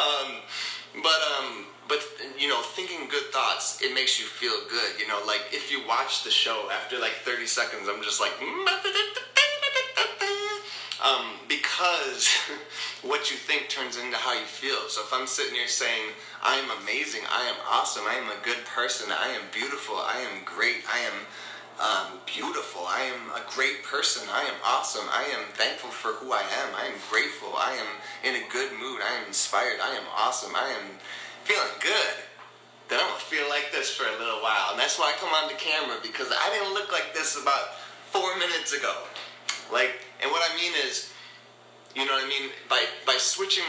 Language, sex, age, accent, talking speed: English, male, 20-39, American, 200 wpm